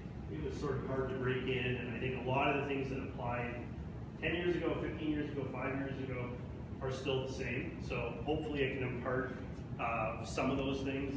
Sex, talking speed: male, 220 wpm